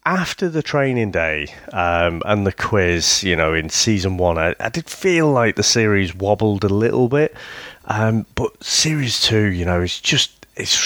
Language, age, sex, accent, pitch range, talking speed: English, 30-49, male, British, 90-130 Hz, 180 wpm